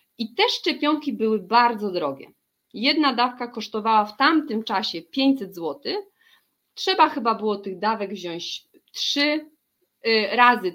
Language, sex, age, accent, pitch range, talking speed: Polish, female, 30-49, native, 225-300 Hz, 125 wpm